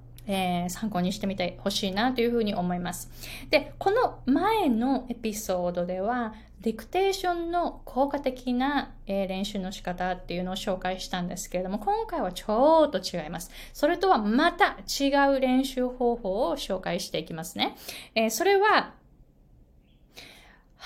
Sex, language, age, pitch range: female, Japanese, 20-39, 195-290 Hz